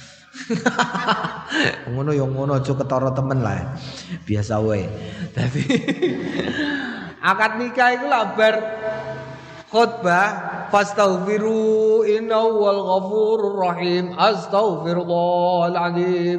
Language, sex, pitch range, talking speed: Indonesian, male, 160-220 Hz, 50 wpm